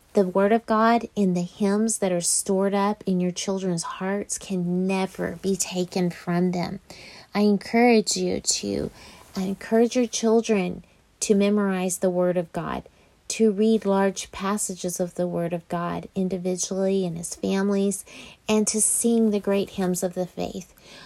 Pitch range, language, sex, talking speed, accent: 185-215 Hz, English, female, 160 wpm, American